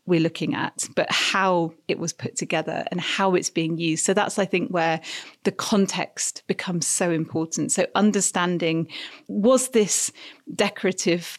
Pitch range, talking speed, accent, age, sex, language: 170-205 Hz, 155 wpm, British, 40-59, female, English